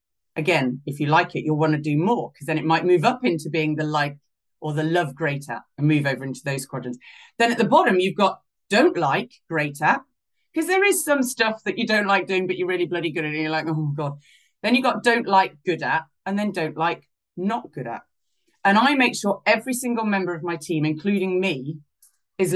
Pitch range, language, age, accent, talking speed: 160-240 Hz, English, 30-49, British, 230 wpm